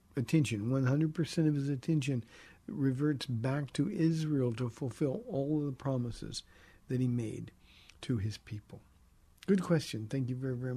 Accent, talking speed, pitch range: American, 160 wpm, 120-155 Hz